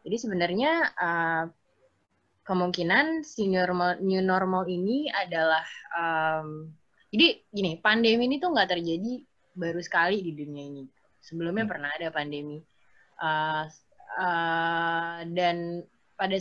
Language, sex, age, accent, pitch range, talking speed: Indonesian, female, 20-39, native, 160-215 Hz, 115 wpm